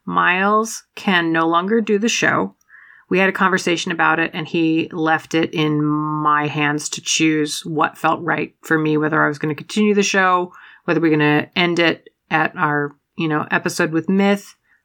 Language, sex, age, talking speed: English, female, 30-49, 195 wpm